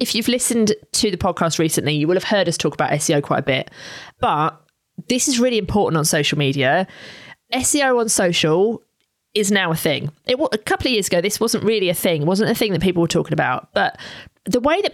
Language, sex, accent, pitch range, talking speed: English, female, British, 170-230 Hz, 230 wpm